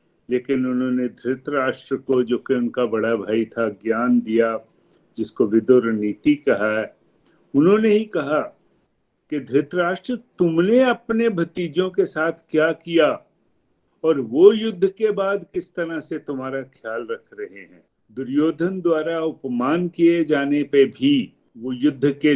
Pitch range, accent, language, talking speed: 125-175 Hz, native, Hindi, 135 wpm